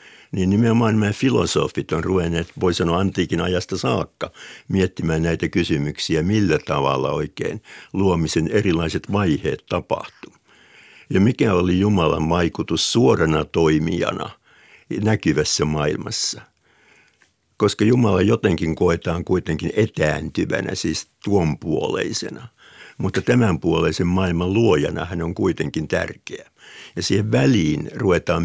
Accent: native